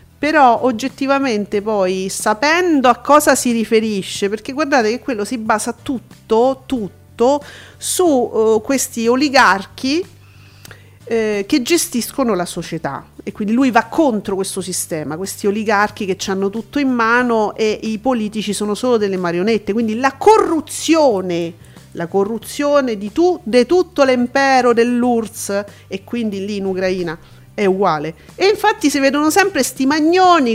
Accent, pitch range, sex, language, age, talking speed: native, 205-270 Hz, female, Italian, 40-59, 140 wpm